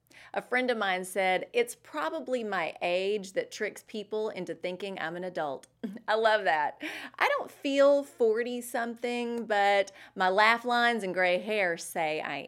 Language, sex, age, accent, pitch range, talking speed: English, female, 30-49, American, 180-235 Hz, 160 wpm